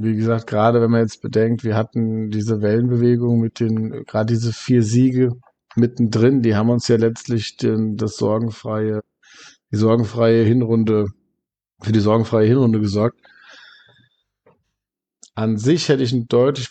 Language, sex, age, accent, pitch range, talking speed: German, male, 50-69, German, 105-120 Hz, 145 wpm